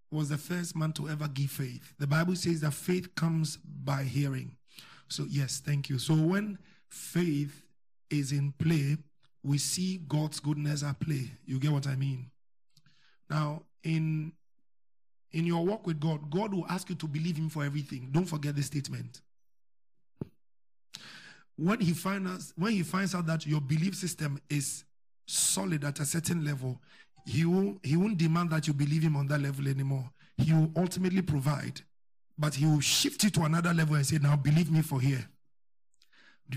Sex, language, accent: male, English, Nigerian